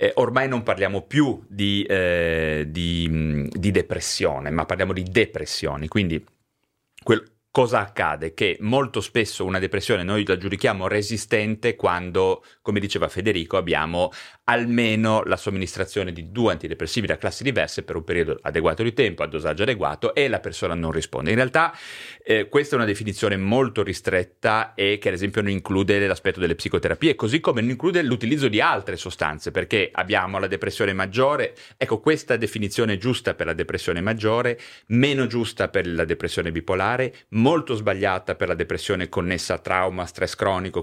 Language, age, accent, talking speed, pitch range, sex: Italian, 30-49, native, 160 wpm, 95-125 Hz, male